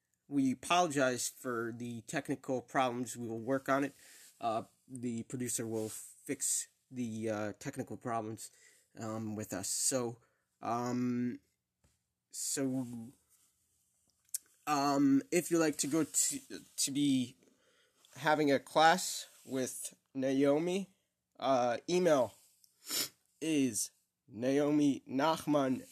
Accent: American